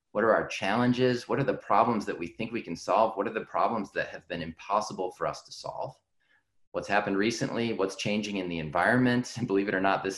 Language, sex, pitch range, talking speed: English, male, 95-120 Hz, 235 wpm